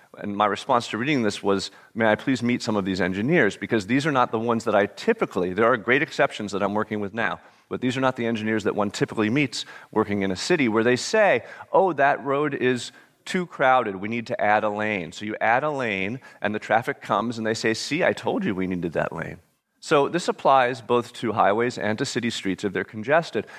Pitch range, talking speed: 105-130 Hz, 240 wpm